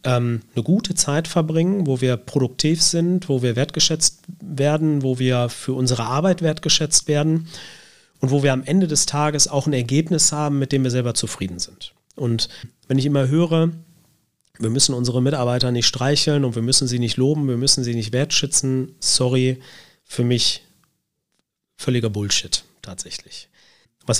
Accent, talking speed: German, 160 wpm